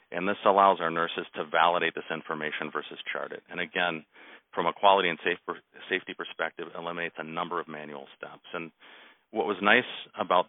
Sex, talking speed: male, 195 wpm